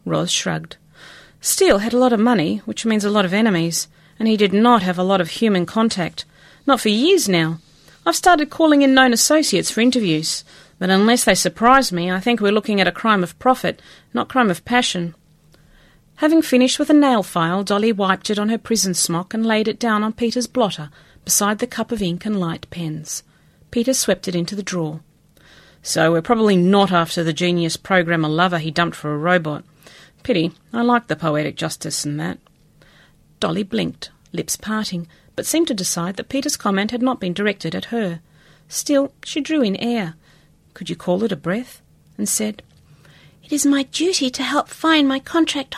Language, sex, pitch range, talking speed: English, female, 170-240 Hz, 195 wpm